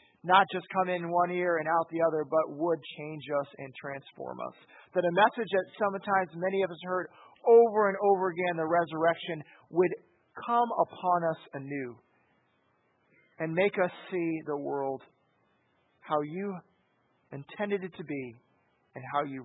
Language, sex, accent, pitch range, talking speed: English, male, American, 155-205 Hz, 160 wpm